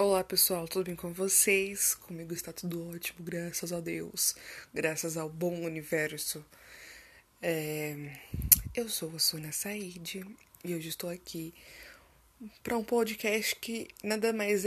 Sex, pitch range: female, 170-205 Hz